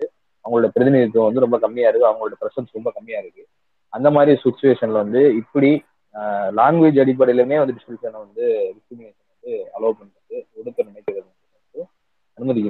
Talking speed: 115 wpm